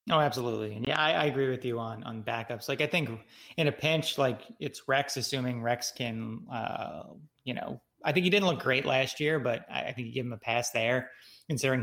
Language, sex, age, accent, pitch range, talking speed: English, male, 30-49, American, 115-135 Hz, 235 wpm